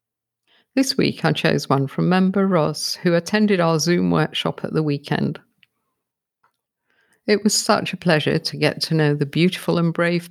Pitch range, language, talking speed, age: 150-195 Hz, English, 170 wpm, 50-69